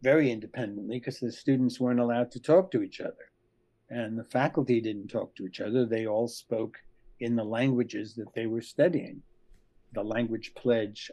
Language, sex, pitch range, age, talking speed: English, male, 115-135 Hz, 60-79, 180 wpm